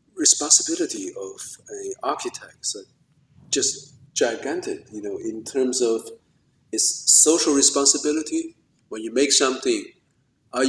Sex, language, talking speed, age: male, English, 110 wpm, 50-69